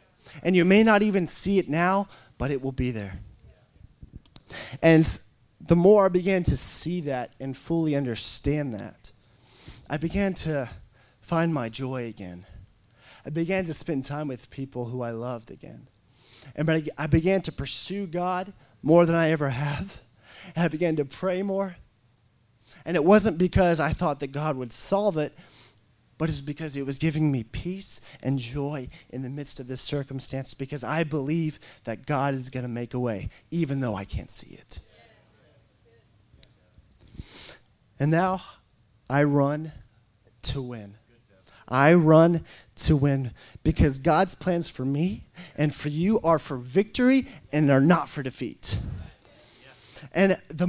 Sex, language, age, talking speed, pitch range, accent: male, English, 20-39, 155 wpm, 120-165 Hz, American